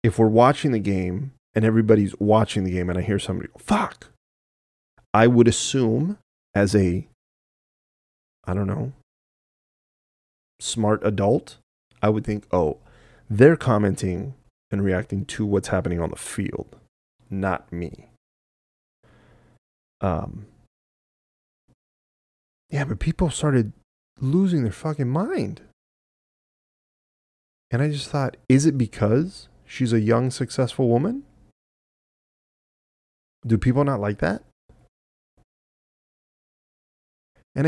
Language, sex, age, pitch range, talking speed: English, male, 30-49, 100-130 Hz, 110 wpm